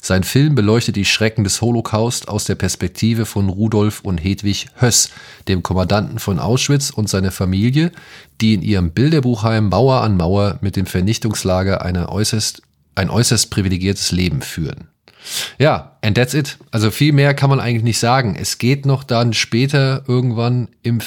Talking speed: 160 wpm